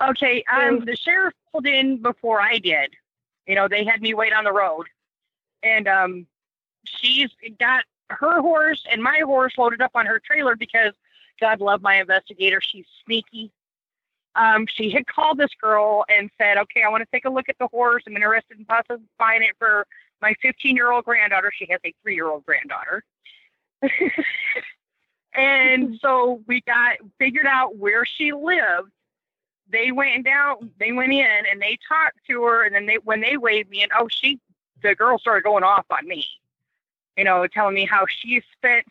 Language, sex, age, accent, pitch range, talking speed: English, female, 40-59, American, 210-265 Hz, 180 wpm